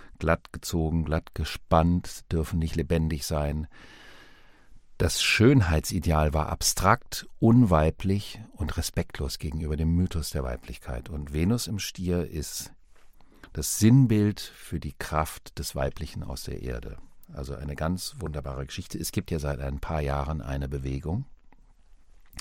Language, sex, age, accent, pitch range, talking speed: German, male, 50-69, German, 75-90 Hz, 130 wpm